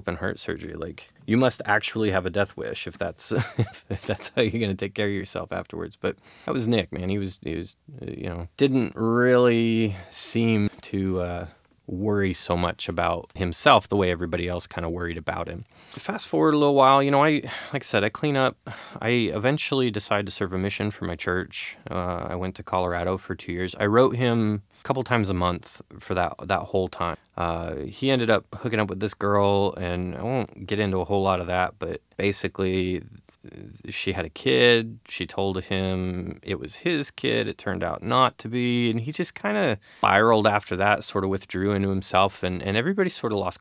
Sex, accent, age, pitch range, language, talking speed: male, American, 20-39, 90-115 Hz, English, 215 wpm